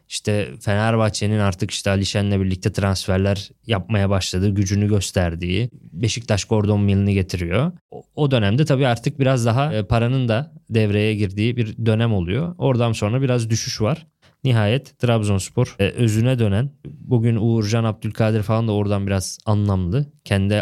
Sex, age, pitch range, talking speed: male, 20-39, 100-130 Hz, 140 wpm